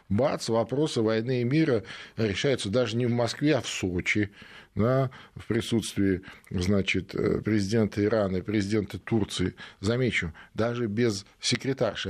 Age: 40-59